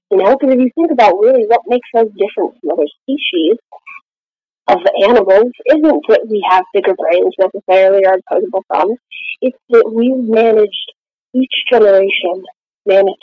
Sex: female